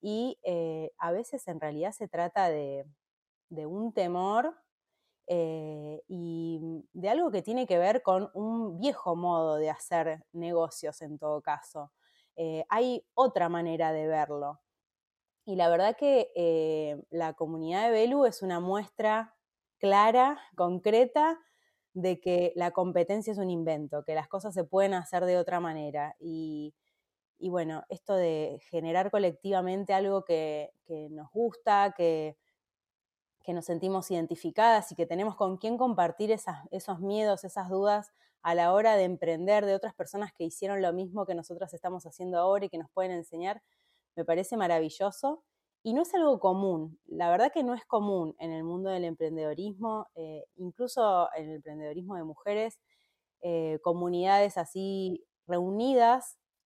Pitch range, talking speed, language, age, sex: 165-210 Hz, 155 wpm, Spanish, 20-39, female